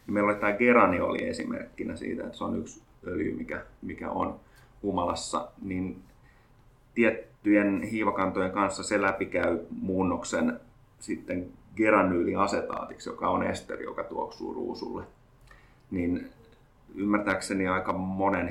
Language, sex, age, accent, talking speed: Finnish, male, 30-49, native, 105 wpm